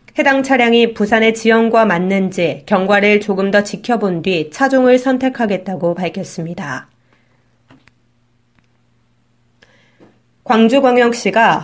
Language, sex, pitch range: Korean, female, 180-235 Hz